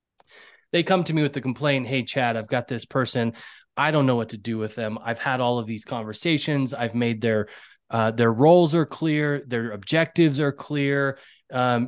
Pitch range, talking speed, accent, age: 125-175 Hz, 200 wpm, American, 20-39